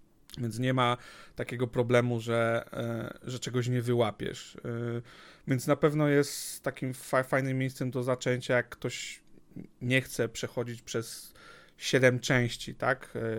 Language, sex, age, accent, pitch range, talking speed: Polish, male, 40-59, native, 120-145 Hz, 125 wpm